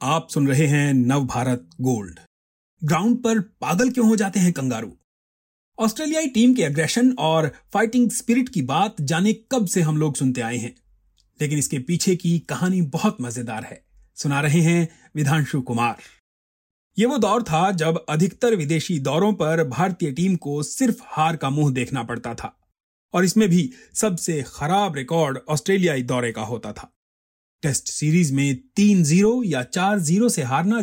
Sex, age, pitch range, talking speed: male, 30-49, 135-195 Hz, 165 wpm